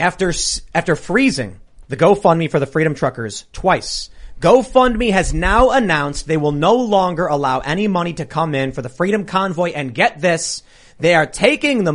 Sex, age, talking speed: male, 30-49, 175 wpm